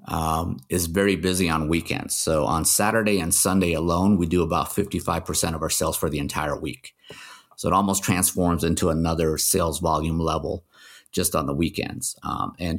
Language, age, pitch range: English, 50-69, 80-95 Hz